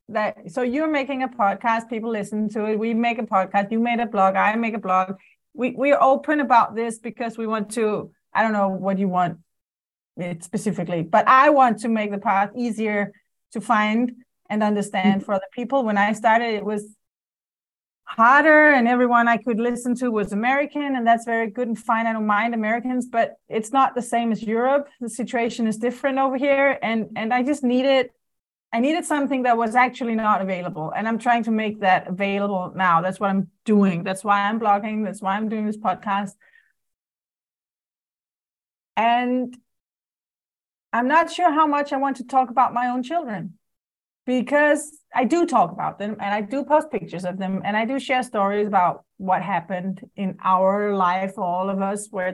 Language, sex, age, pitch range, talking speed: English, female, 30-49, 200-250 Hz, 195 wpm